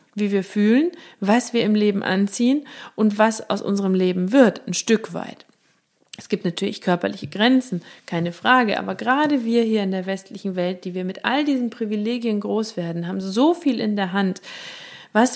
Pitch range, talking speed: 185-250 Hz, 185 wpm